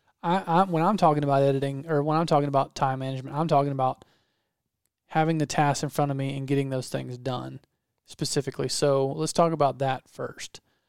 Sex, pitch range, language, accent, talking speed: male, 135-155 Hz, English, American, 195 wpm